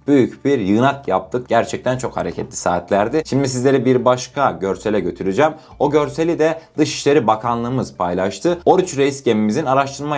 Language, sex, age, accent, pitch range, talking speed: Turkish, male, 30-49, native, 115-155 Hz, 140 wpm